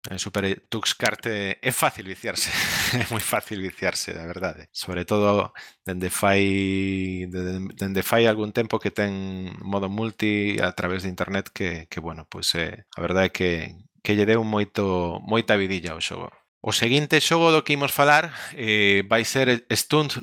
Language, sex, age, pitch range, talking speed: English, male, 20-39, 95-130 Hz, 170 wpm